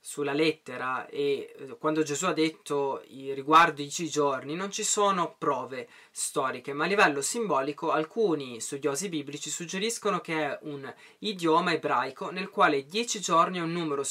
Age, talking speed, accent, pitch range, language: 20-39, 155 wpm, native, 145-195 Hz, Italian